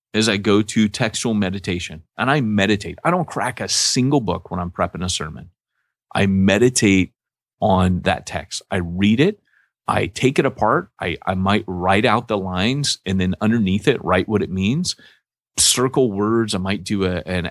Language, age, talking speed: English, 30-49, 185 wpm